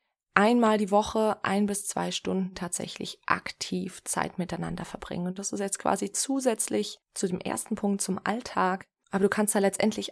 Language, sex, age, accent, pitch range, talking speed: German, female, 20-39, German, 185-210 Hz, 170 wpm